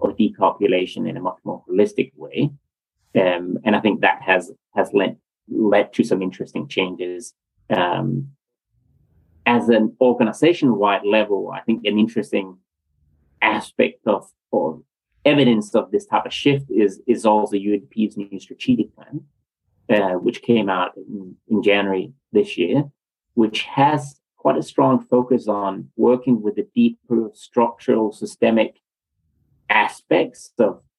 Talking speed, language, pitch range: 140 wpm, English, 100-125 Hz